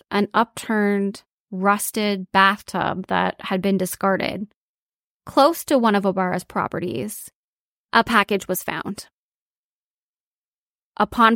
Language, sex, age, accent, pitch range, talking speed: English, female, 20-39, American, 195-225 Hz, 100 wpm